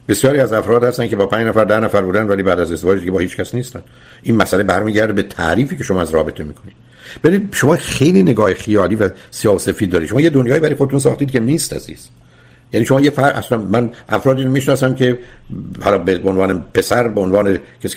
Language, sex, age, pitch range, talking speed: Persian, male, 60-79, 110-140 Hz, 215 wpm